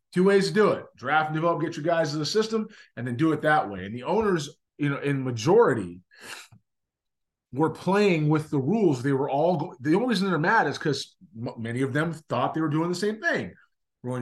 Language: English